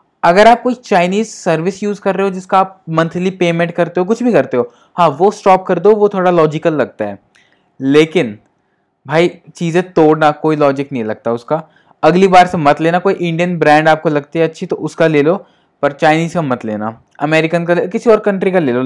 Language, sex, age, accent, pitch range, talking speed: Hindi, male, 20-39, native, 145-180 Hz, 215 wpm